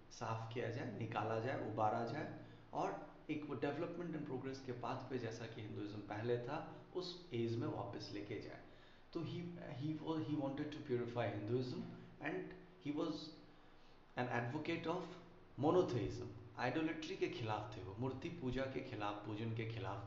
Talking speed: 150 wpm